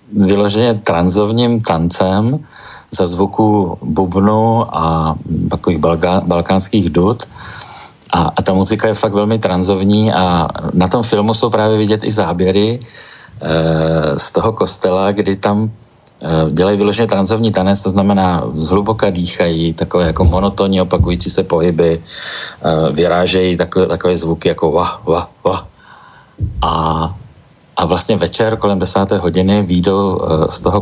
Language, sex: Slovak, male